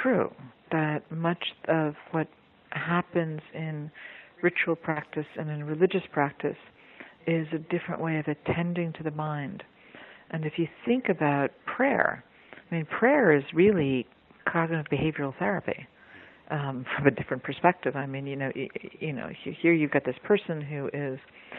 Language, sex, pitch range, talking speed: English, female, 140-170 Hz, 155 wpm